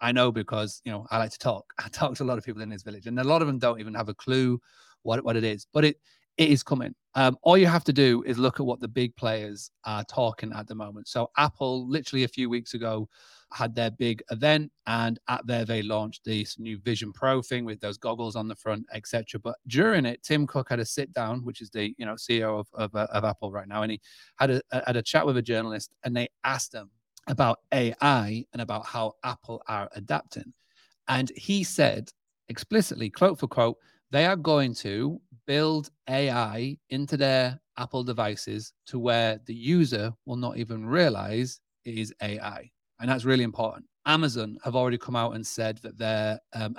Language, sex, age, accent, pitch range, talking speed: English, male, 30-49, British, 110-130 Hz, 215 wpm